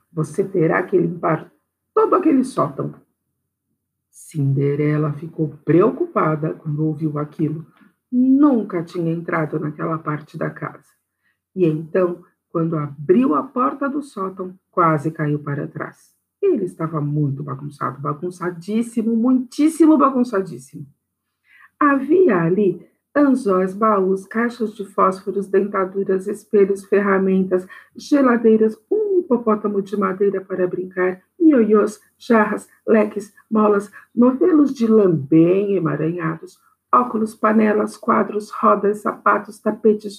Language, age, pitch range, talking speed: Portuguese, 50-69, 175-230 Hz, 105 wpm